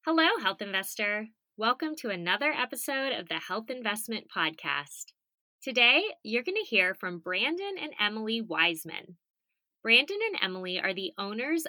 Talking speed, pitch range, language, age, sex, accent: 145 wpm, 180-285 Hz, English, 20-39, female, American